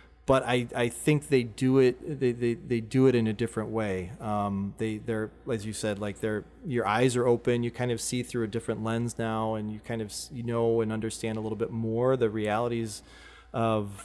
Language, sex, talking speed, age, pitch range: English, male, 220 wpm, 30-49, 105-120 Hz